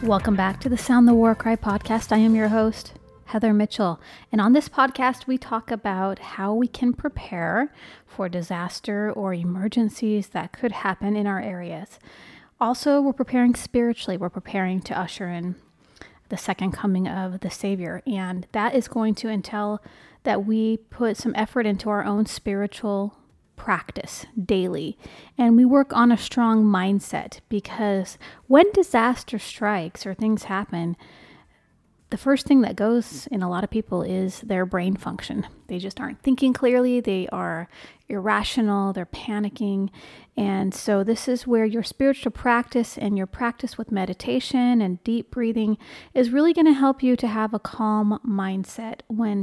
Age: 30-49